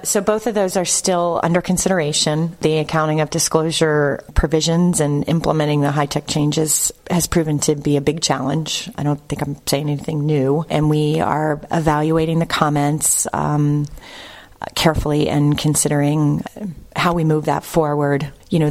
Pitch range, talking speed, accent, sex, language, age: 150-165 Hz, 160 wpm, American, female, English, 30-49